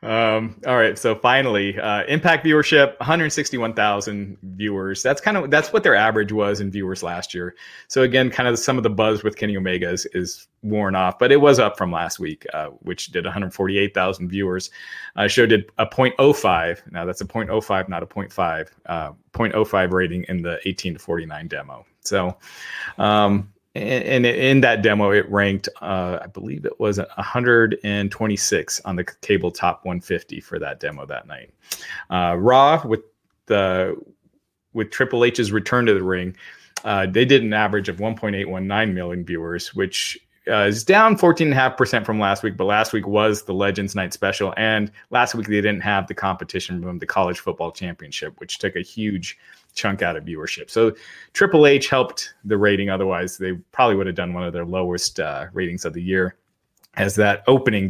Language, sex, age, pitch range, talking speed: English, male, 30-49, 95-110 Hz, 180 wpm